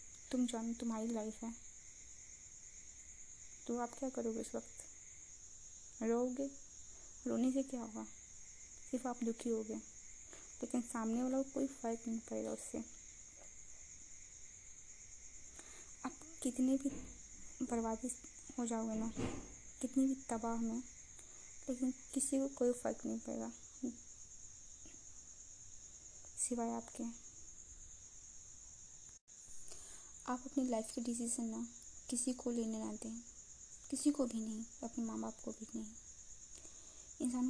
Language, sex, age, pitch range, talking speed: Hindi, female, 20-39, 220-250 Hz, 115 wpm